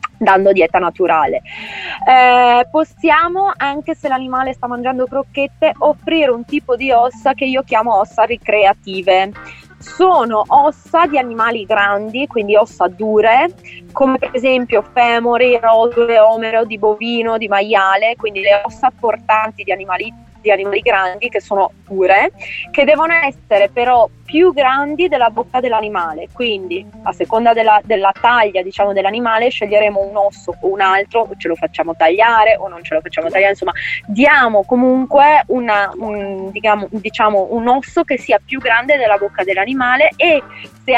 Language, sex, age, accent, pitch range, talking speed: Italian, female, 20-39, native, 200-265 Hz, 145 wpm